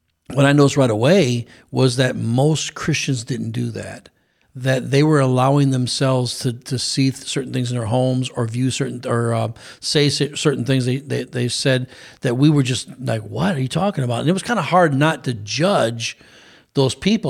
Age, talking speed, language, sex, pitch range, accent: 40-59, 200 wpm, English, male, 125-145 Hz, American